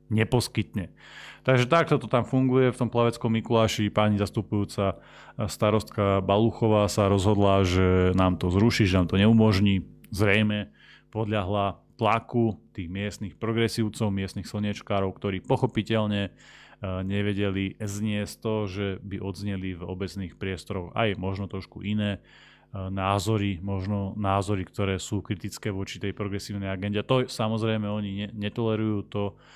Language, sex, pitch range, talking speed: Slovak, male, 100-110 Hz, 130 wpm